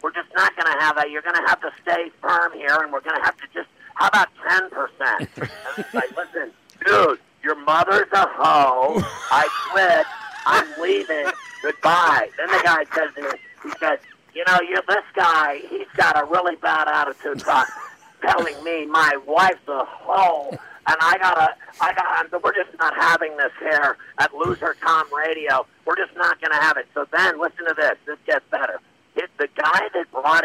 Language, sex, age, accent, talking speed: English, male, 50-69, American, 195 wpm